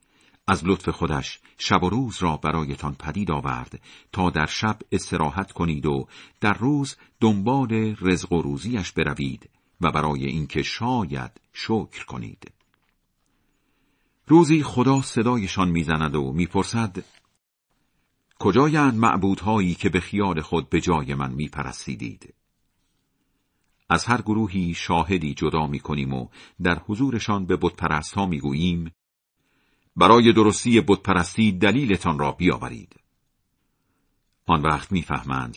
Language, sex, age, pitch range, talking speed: Persian, male, 50-69, 80-115 Hz, 115 wpm